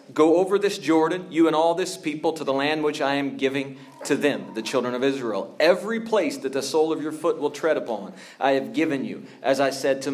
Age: 40-59